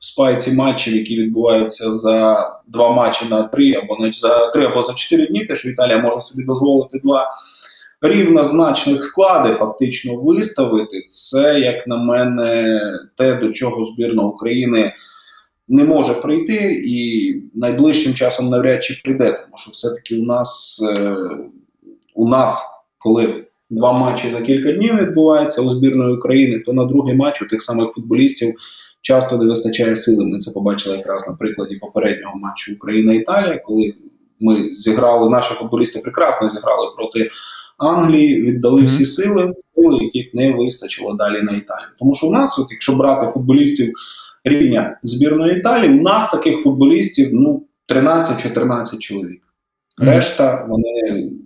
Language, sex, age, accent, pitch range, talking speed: Ukrainian, male, 20-39, native, 115-160 Hz, 140 wpm